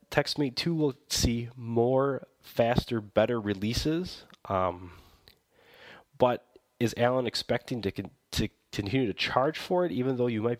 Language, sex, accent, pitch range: English, male, American, 100-130 Hz